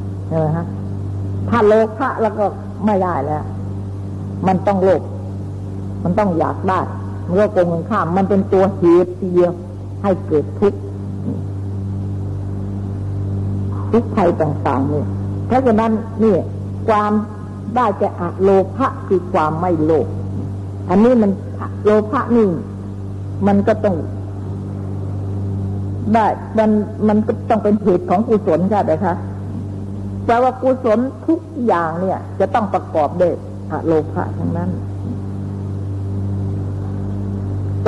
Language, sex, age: Thai, female, 60-79